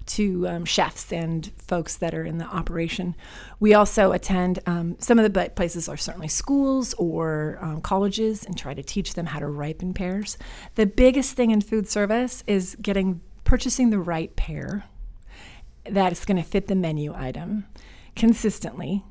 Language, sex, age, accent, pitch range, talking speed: English, female, 30-49, American, 170-210 Hz, 165 wpm